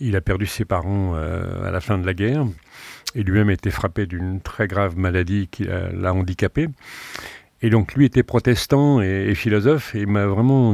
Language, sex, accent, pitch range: French, male, French, 95-125 Hz